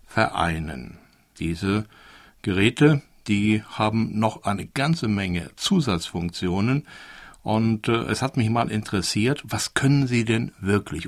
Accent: German